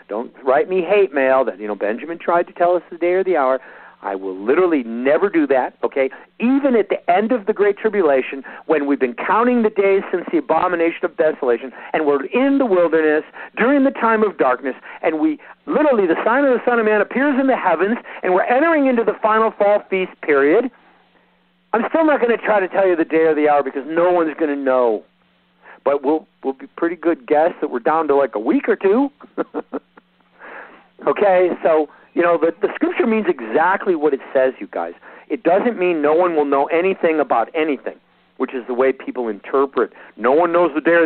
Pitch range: 145-225 Hz